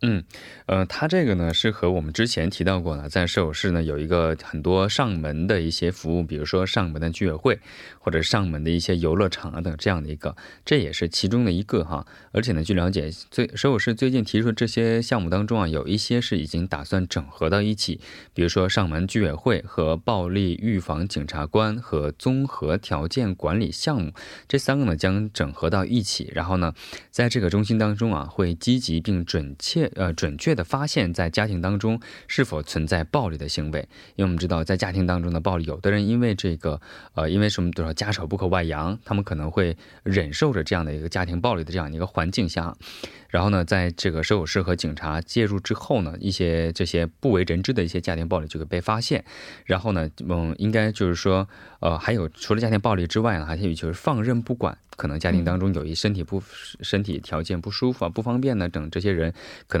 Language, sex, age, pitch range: Korean, male, 20-39, 80-105 Hz